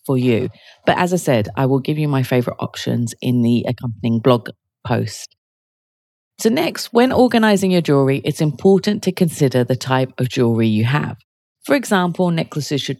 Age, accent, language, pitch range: 30-49, British, English, 125-175 Hz